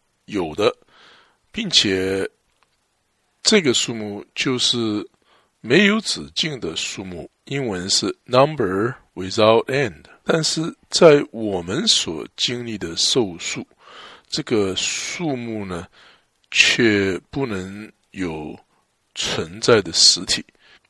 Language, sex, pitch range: English, male, 95-140 Hz